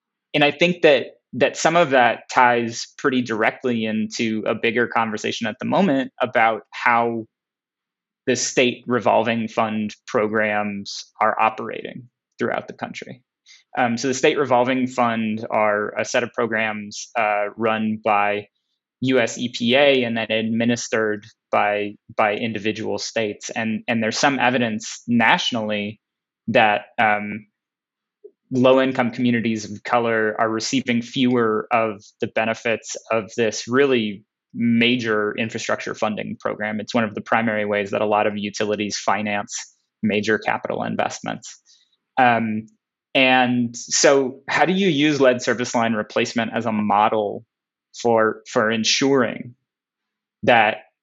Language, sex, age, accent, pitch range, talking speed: English, male, 20-39, American, 110-125 Hz, 130 wpm